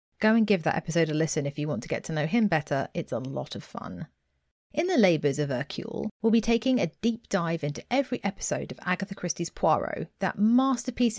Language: English